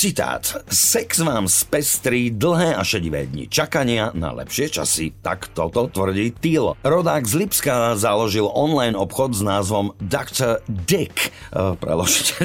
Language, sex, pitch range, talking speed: Slovak, male, 95-125 Hz, 135 wpm